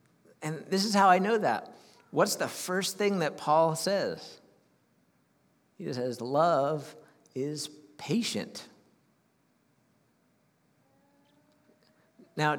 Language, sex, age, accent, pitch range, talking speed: English, male, 50-69, American, 125-150 Hz, 95 wpm